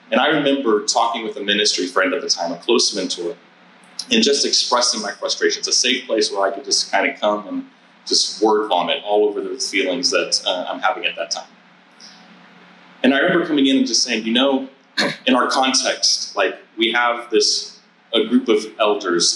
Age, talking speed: 30-49, 205 wpm